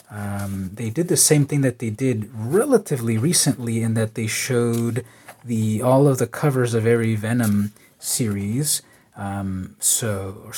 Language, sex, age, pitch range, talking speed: English, male, 30-49, 105-140 Hz, 155 wpm